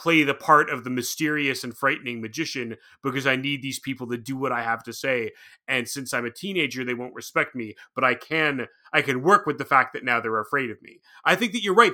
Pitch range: 130-170 Hz